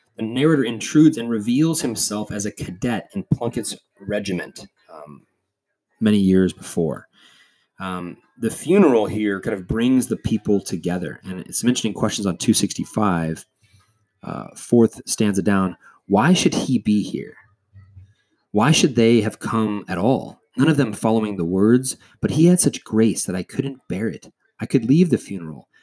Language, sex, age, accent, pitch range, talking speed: English, male, 30-49, American, 100-130 Hz, 160 wpm